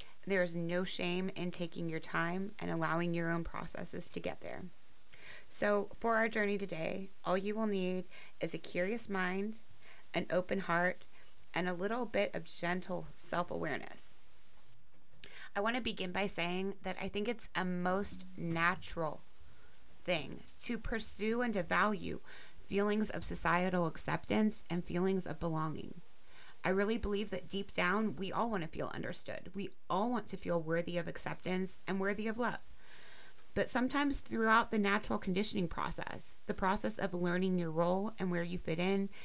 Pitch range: 175-210 Hz